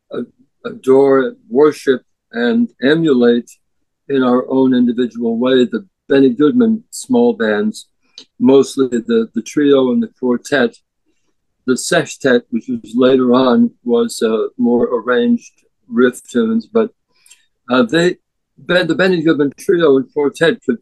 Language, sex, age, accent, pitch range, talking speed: English, male, 60-79, American, 130-185 Hz, 125 wpm